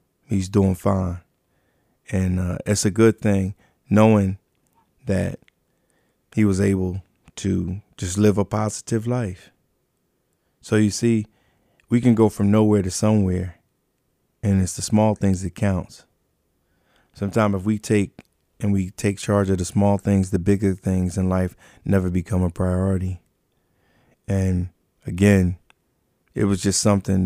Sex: male